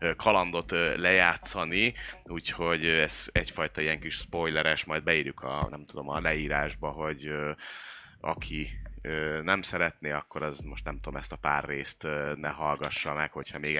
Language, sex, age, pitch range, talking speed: Hungarian, male, 30-49, 75-90 Hz, 145 wpm